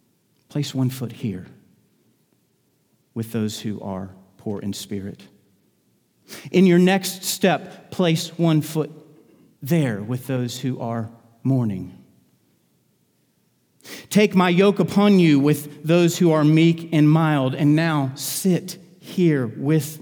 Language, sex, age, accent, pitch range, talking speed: English, male, 40-59, American, 125-175 Hz, 125 wpm